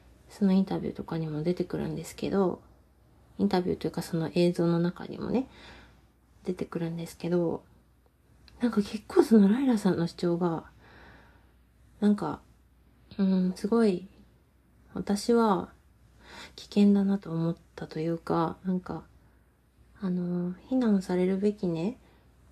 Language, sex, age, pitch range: Japanese, female, 30-49, 175-220 Hz